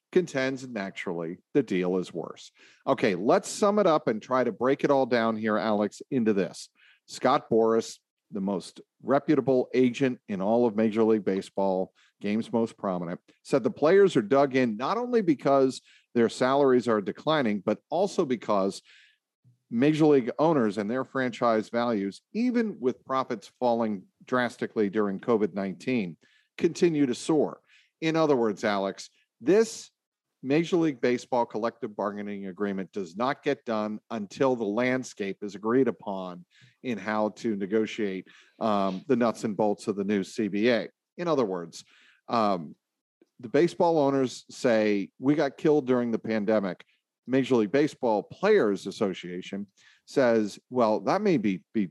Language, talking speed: English, 150 wpm